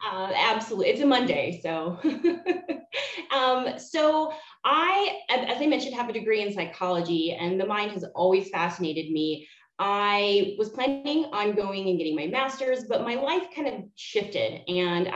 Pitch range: 175-235 Hz